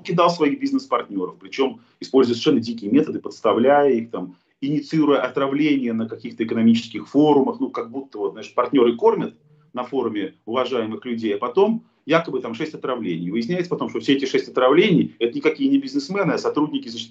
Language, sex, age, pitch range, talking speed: Russian, male, 40-59, 120-175 Hz, 170 wpm